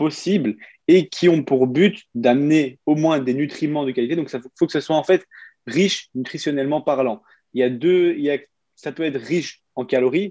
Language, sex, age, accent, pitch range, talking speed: French, male, 20-39, French, 130-175 Hz, 220 wpm